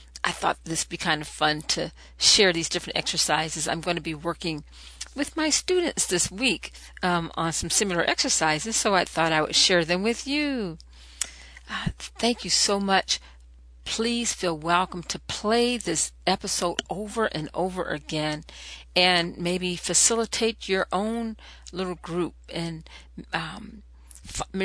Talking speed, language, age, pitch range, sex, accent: 150 wpm, English, 50-69, 150-185 Hz, female, American